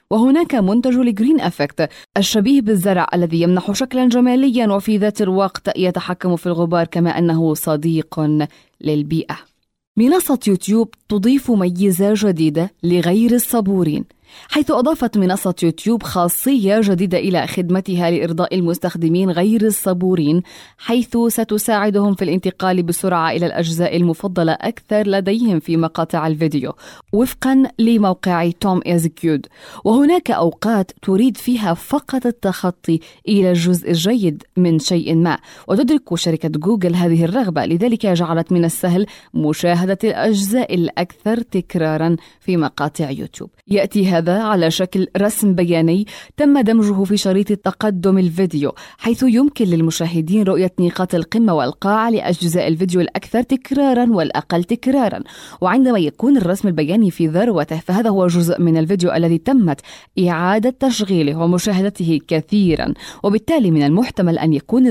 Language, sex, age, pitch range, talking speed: Arabic, female, 20-39, 170-220 Hz, 120 wpm